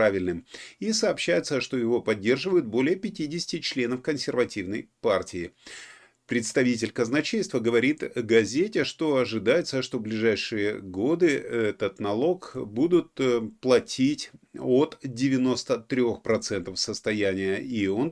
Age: 30-49